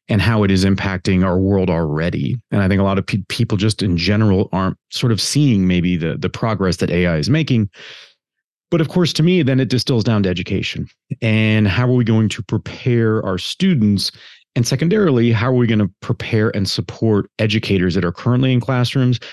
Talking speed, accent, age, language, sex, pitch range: 205 wpm, American, 40-59, English, male, 95-125 Hz